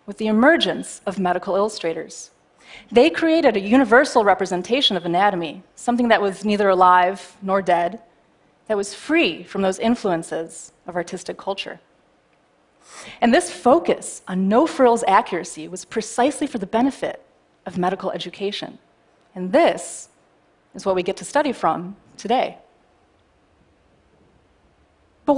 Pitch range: 180-240 Hz